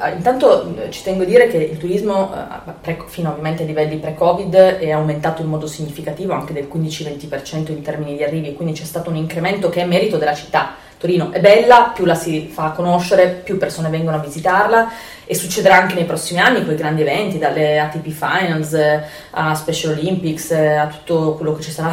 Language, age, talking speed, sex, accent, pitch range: Italian, 20-39, 190 wpm, female, native, 160-190 Hz